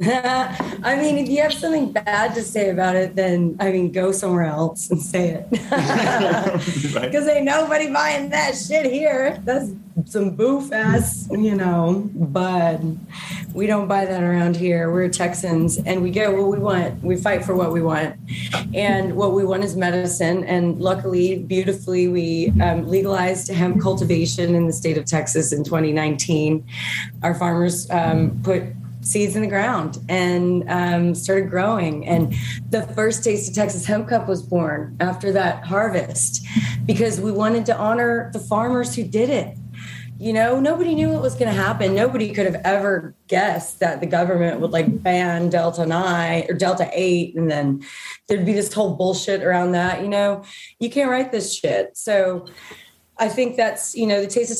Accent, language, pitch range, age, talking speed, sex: American, English, 175-215 Hz, 30-49, 175 wpm, female